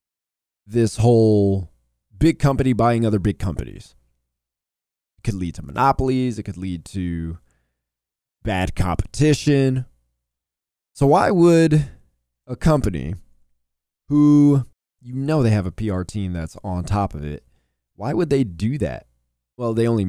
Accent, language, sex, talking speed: American, English, male, 130 wpm